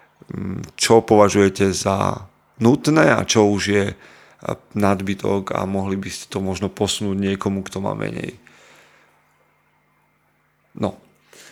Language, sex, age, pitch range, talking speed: Slovak, male, 30-49, 100-120 Hz, 110 wpm